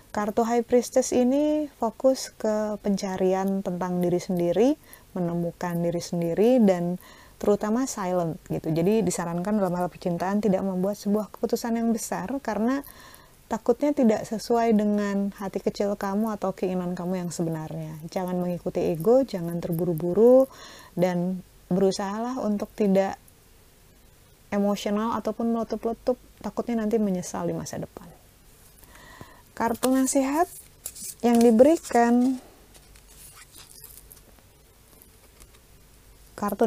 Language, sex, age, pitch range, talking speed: Indonesian, female, 30-49, 180-235 Hz, 105 wpm